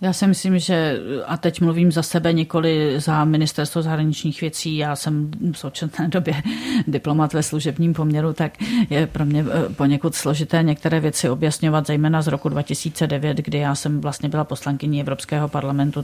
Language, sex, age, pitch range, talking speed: Czech, female, 40-59, 145-160 Hz, 165 wpm